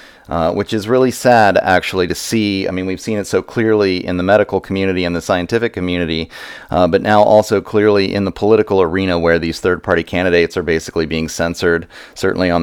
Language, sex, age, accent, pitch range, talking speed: English, male, 30-49, American, 85-115 Hz, 200 wpm